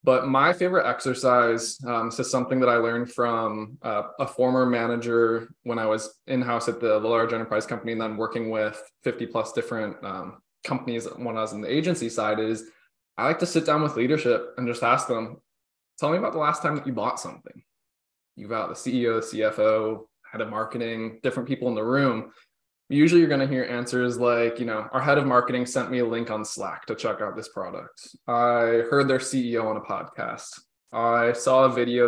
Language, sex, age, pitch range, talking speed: English, male, 20-39, 115-135 Hz, 205 wpm